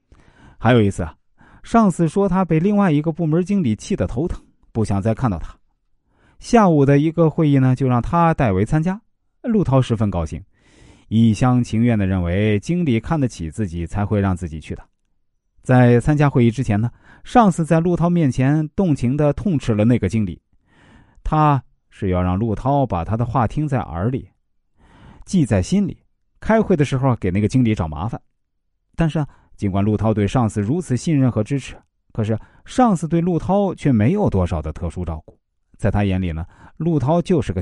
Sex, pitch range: male, 100-150 Hz